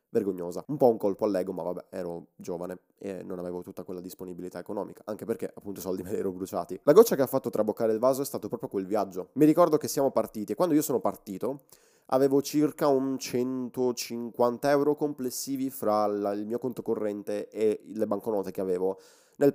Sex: male